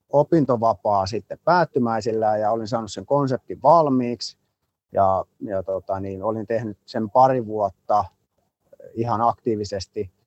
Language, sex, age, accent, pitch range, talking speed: Finnish, male, 30-49, native, 100-125 Hz, 110 wpm